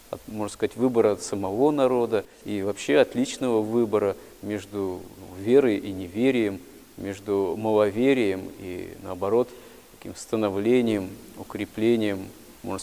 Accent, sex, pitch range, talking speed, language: native, male, 105-125 Hz, 110 wpm, Russian